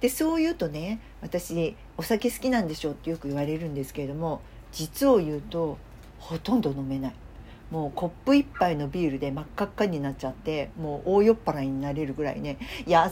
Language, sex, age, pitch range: Japanese, female, 50-69, 160-250 Hz